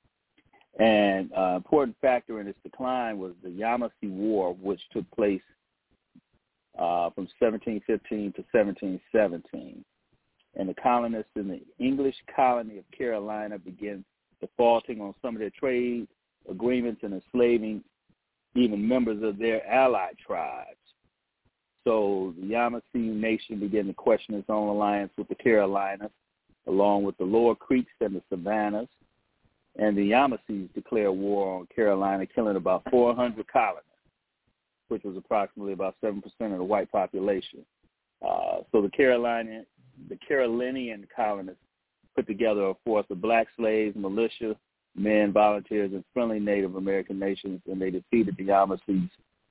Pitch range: 95-115 Hz